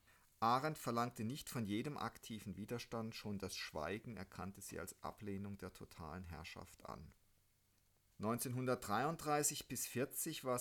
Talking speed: 125 wpm